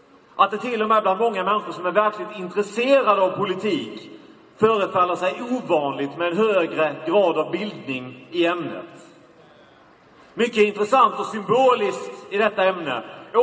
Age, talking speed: 40-59, 150 wpm